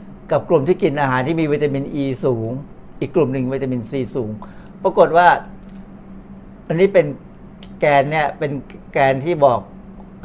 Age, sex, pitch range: 60-79, male, 130-170 Hz